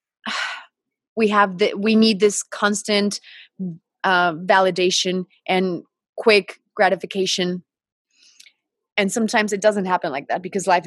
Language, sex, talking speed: English, female, 115 wpm